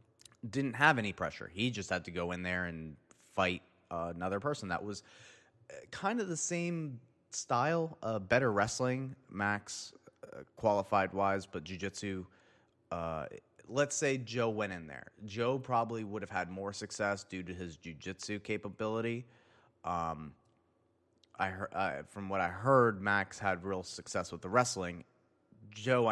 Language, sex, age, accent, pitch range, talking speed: English, male, 30-49, American, 95-125 Hz, 155 wpm